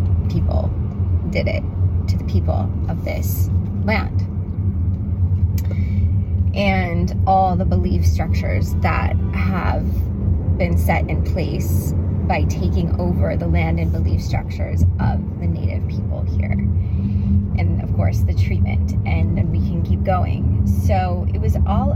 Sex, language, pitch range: female, English, 90-95 Hz